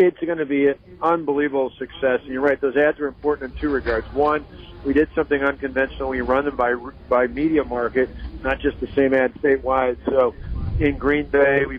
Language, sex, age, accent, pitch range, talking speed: English, male, 50-69, American, 125-140 Hz, 205 wpm